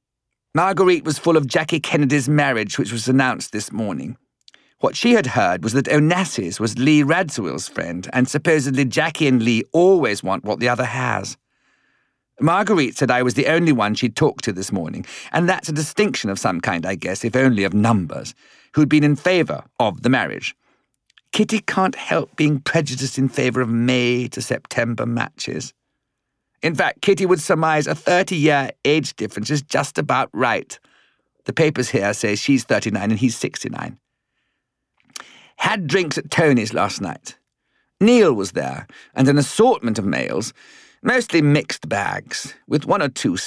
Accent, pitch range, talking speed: British, 120-155 Hz, 165 wpm